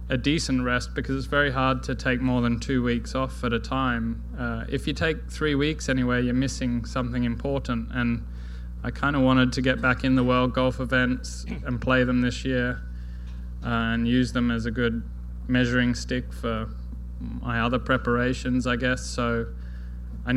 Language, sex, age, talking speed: English, male, 20-39, 185 wpm